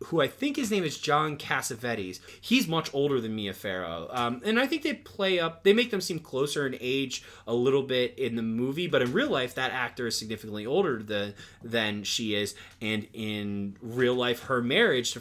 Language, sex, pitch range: English, male, 110-150 Hz